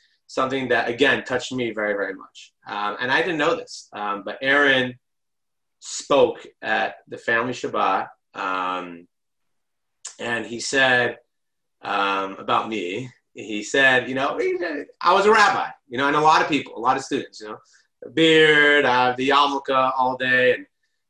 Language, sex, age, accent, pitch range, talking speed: English, male, 30-49, American, 110-135 Hz, 170 wpm